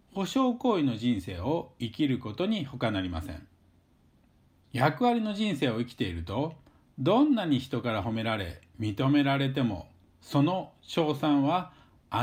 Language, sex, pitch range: Japanese, male, 105-165 Hz